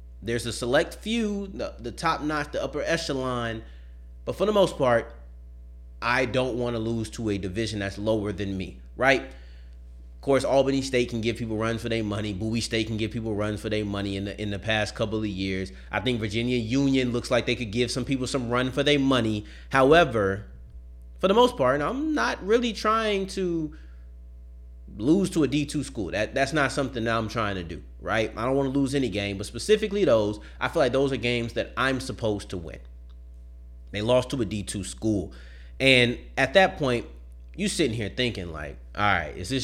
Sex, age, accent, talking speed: male, 30-49, American, 210 wpm